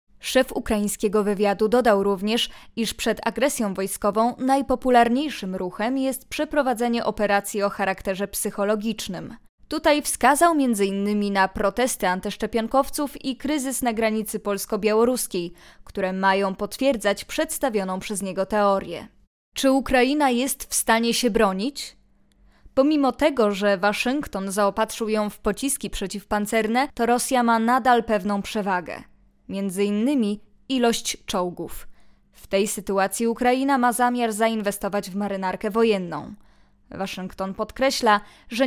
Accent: native